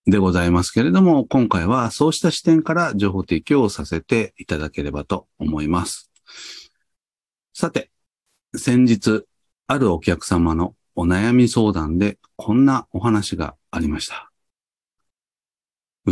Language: Japanese